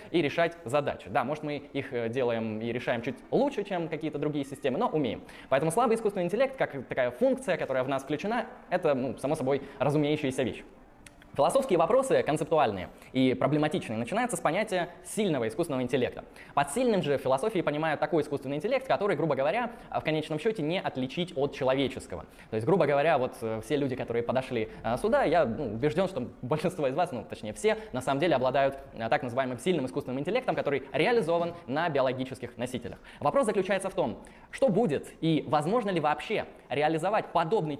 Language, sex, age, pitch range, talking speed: Russian, male, 20-39, 135-175 Hz, 175 wpm